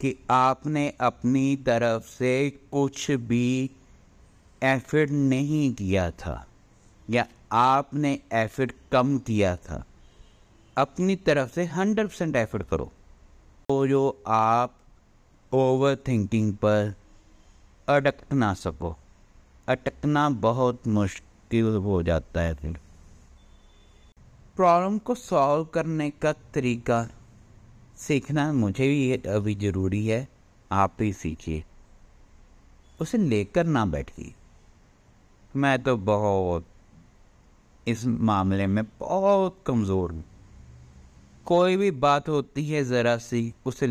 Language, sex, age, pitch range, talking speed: Punjabi, male, 60-79, 95-140 Hz, 105 wpm